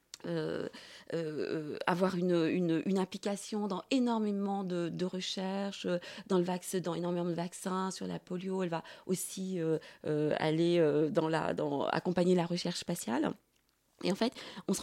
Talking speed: 160 wpm